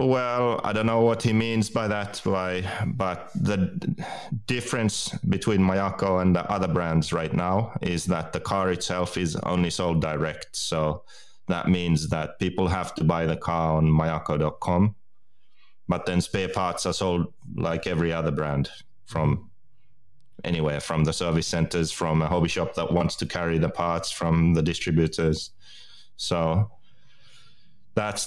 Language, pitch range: English, 85-100 Hz